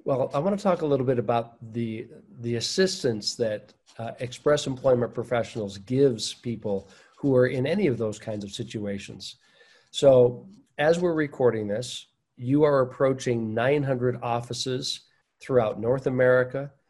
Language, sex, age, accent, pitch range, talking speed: English, male, 50-69, American, 115-135 Hz, 145 wpm